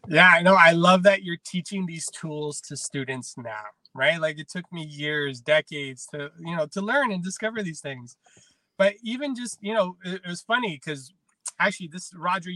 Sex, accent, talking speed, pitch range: male, American, 200 wpm, 160-205 Hz